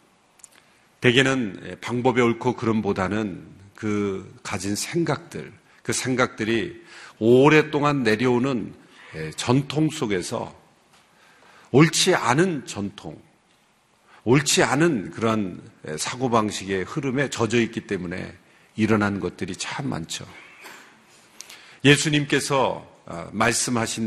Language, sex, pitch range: Korean, male, 110-145 Hz